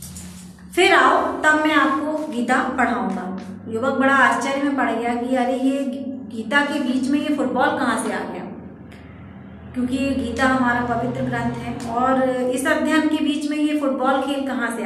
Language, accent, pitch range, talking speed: Hindi, native, 230-270 Hz, 180 wpm